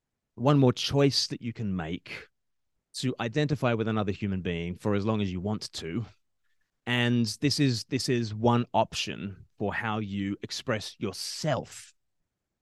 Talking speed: 150 wpm